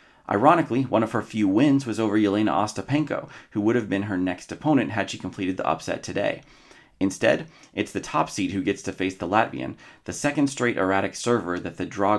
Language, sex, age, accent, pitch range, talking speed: English, male, 30-49, American, 95-115 Hz, 205 wpm